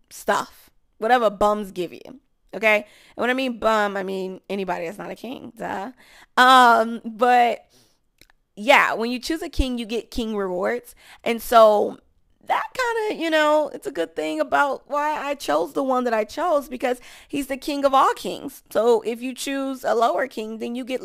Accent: American